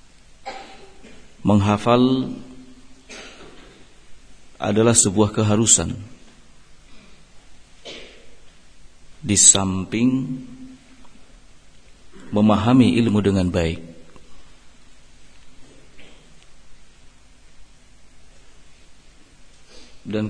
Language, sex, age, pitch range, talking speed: Indonesian, male, 50-69, 100-115 Hz, 35 wpm